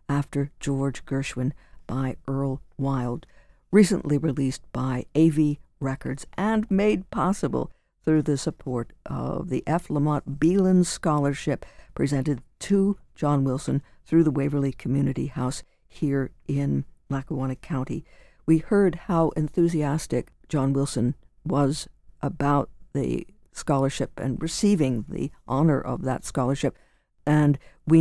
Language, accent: English, American